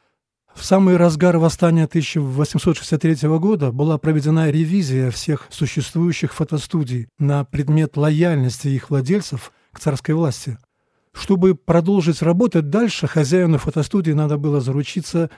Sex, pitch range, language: male, 140-170 Hz, Russian